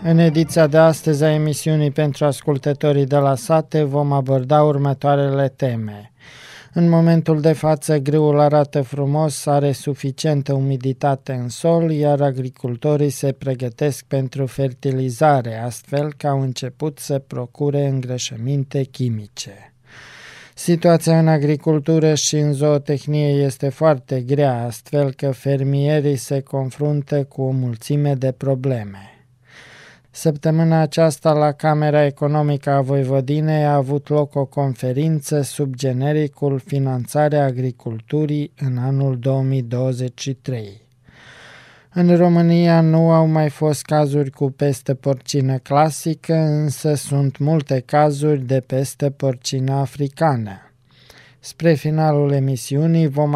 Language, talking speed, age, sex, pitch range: Romanian, 115 wpm, 20-39, male, 135-150 Hz